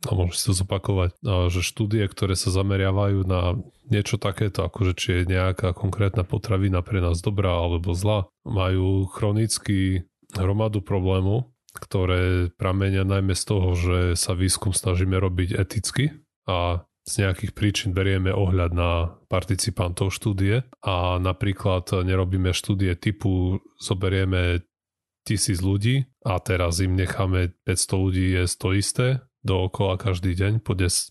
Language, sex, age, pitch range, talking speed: Slovak, male, 20-39, 95-110 Hz, 130 wpm